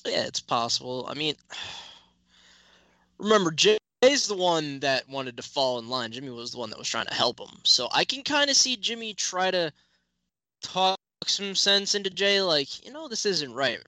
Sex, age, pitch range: male, 10-29, 115-140 Hz